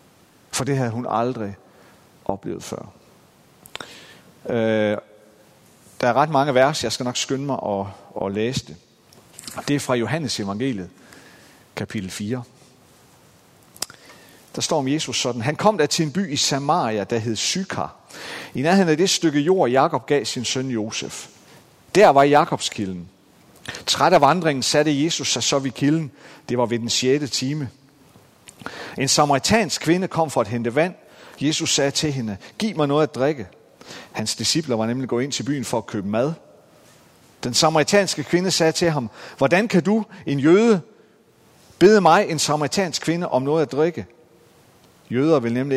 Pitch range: 115-155 Hz